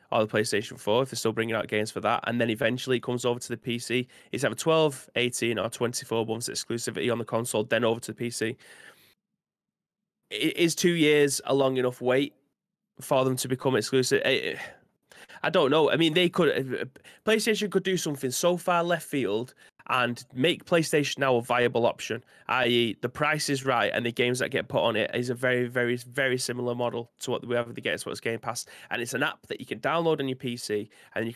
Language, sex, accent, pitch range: English, male, British, 120-135 Hz